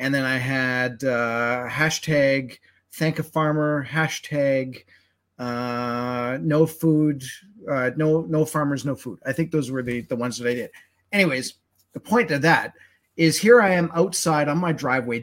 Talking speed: 165 wpm